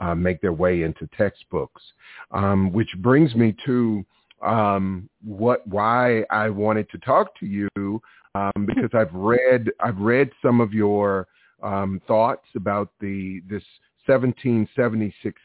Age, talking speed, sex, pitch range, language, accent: 50-69, 135 wpm, male, 95-115 Hz, English, American